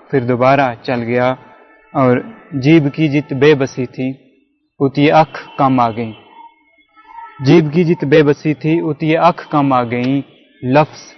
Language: Urdu